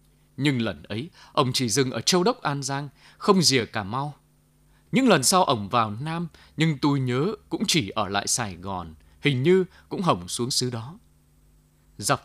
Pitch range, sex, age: 100-160 Hz, male, 20-39